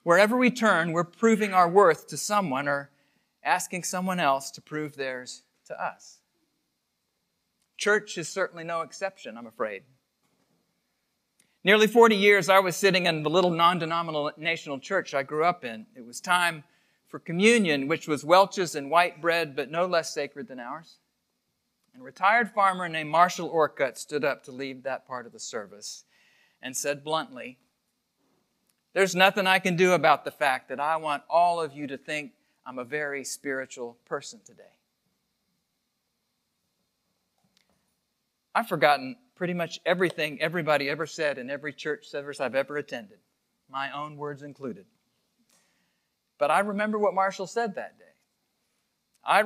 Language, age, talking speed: English, 40-59, 155 wpm